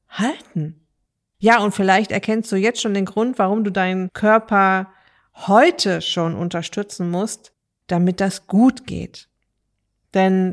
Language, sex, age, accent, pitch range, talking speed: German, female, 50-69, German, 180-215 Hz, 130 wpm